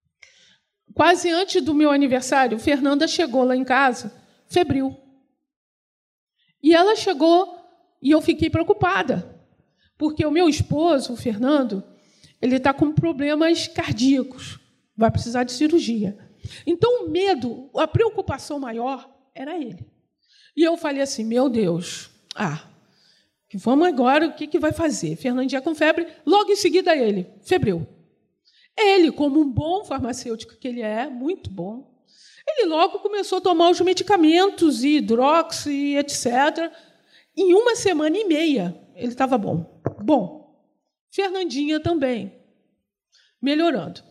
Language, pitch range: Portuguese, 250-340 Hz